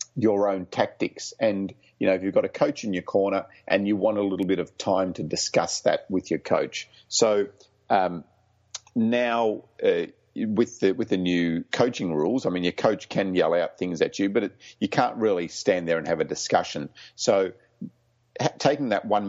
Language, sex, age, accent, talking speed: English, male, 50-69, Australian, 200 wpm